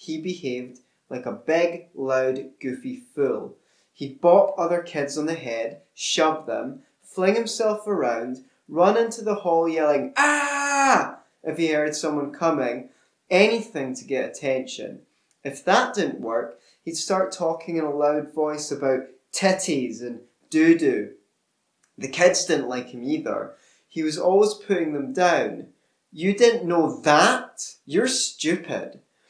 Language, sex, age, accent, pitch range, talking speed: English, male, 20-39, British, 145-215 Hz, 140 wpm